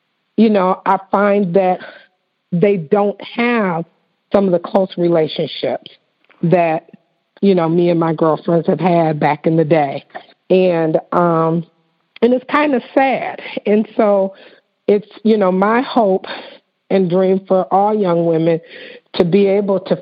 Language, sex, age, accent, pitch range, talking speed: English, female, 50-69, American, 175-210 Hz, 150 wpm